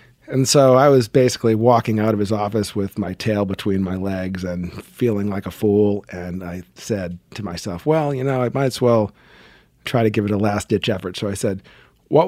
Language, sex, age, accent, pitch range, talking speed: English, male, 40-59, American, 95-120 Hz, 215 wpm